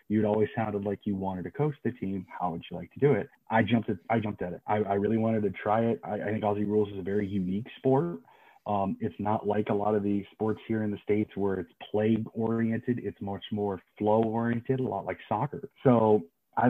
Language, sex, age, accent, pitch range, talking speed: English, male, 30-49, American, 95-110 Hz, 235 wpm